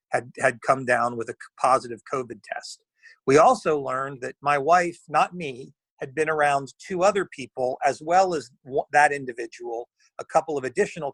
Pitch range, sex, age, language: 140-190 Hz, male, 40-59, English